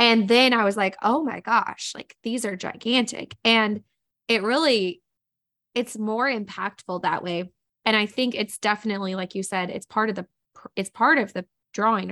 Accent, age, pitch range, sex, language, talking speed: American, 20-39, 185-220 Hz, female, English, 185 wpm